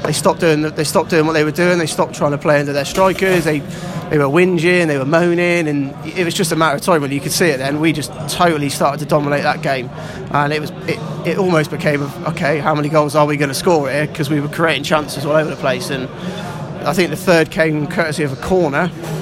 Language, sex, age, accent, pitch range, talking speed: English, male, 20-39, British, 145-170 Hz, 265 wpm